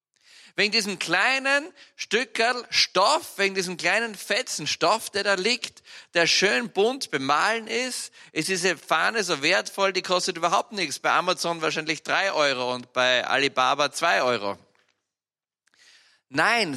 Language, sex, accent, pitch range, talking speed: German, male, German, 155-220 Hz, 135 wpm